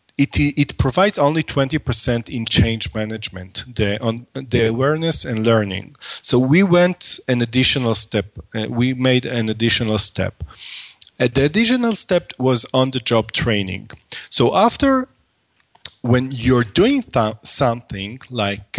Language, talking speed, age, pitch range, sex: English, 125 wpm, 40-59, 115-150 Hz, male